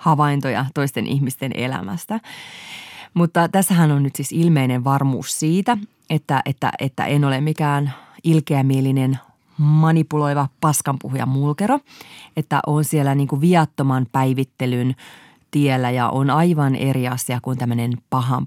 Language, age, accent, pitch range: Finnish, 30-49, native, 135-185 Hz